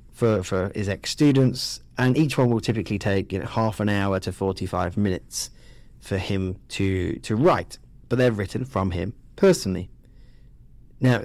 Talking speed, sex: 170 wpm, male